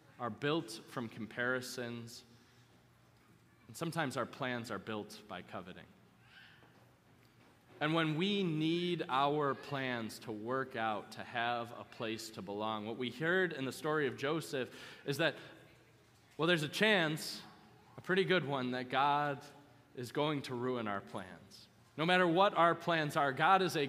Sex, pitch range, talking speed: male, 115-160 Hz, 155 wpm